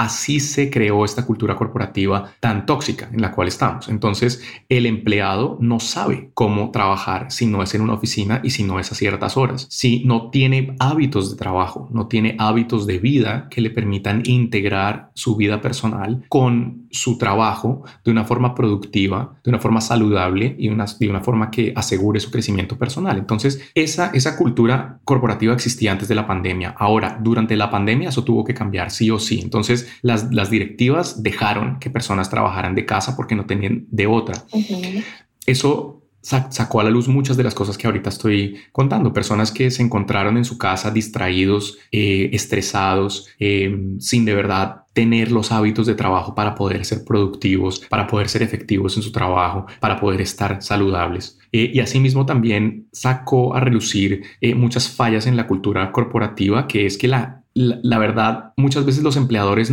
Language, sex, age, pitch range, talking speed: Spanish, male, 30-49, 105-125 Hz, 180 wpm